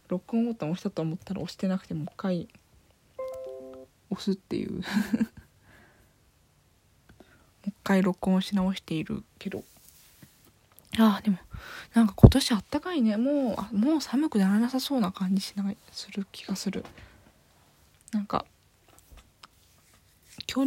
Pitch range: 175-240 Hz